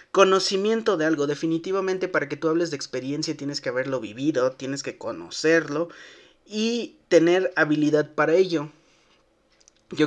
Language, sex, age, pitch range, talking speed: Spanish, male, 30-49, 140-165 Hz, 135 wpm